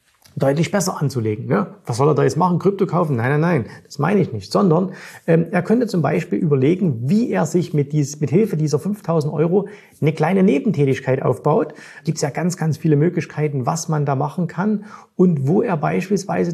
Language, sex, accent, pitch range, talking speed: German, male, German, 150-185 Hz, 195 wpm